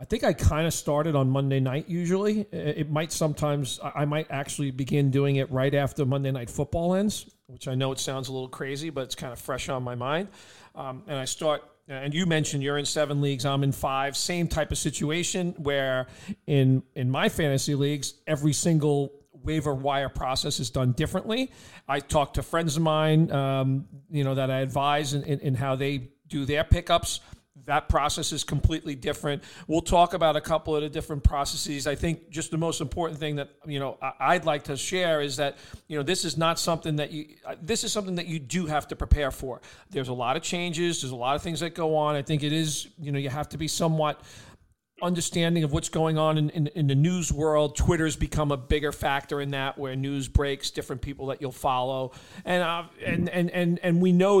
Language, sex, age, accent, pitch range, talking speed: English, male, 40-59, American, 135-160 Hz, 220 wpm